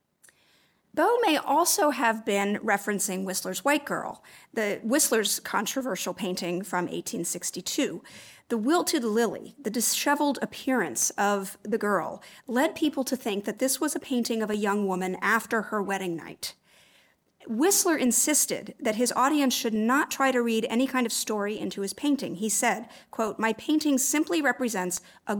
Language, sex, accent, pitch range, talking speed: English, female, American, 205-270 Hz, 155 wpm